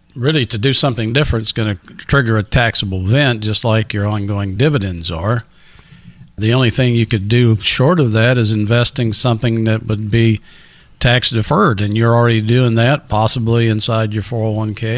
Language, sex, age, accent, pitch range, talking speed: English, male, 50-69, American, 105-125 Hz, 170 wpm